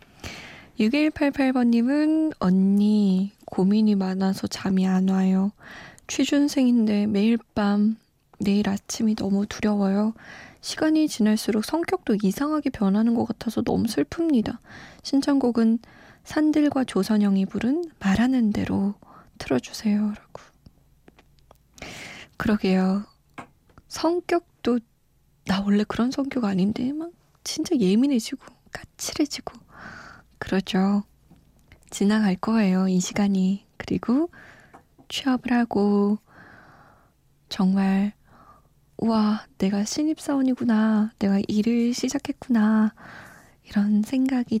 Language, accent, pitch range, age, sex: Korean, native, 200-255 Hz, 20-39, female